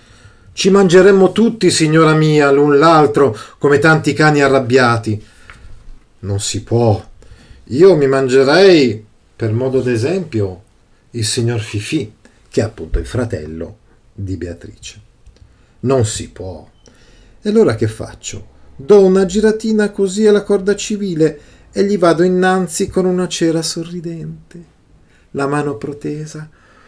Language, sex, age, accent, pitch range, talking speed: Italian, male, 40-59, native, 110-160 Hz, 125 wpm